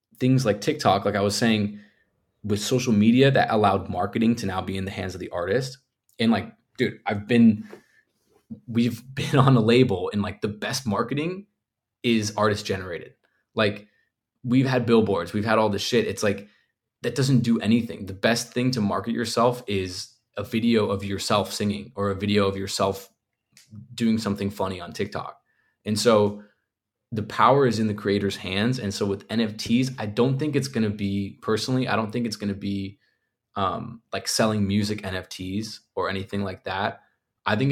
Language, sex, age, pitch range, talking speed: English, male, 20-39, 100-120 Hz, 185 wpm